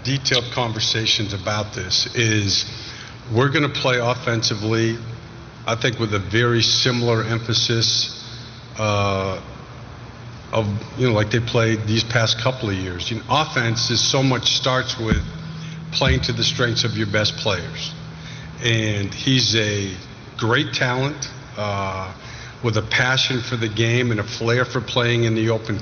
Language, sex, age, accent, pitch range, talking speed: English, male, 50-69, American, 110-125 Hz, 145 wpm